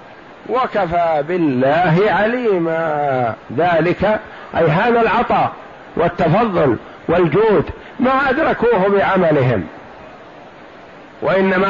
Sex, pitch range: male, 170-215 Hz